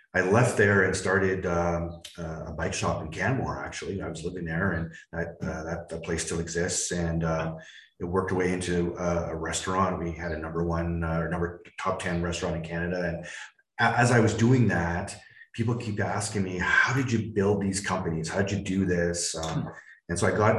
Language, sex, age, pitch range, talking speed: English, male, 30-49, 80-100 Hz, 220 wpm